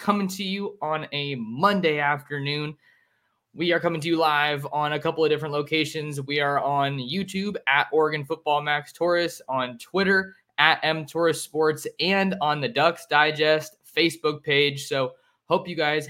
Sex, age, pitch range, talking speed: male, 20-39, 140-170 Hz, 165 wpm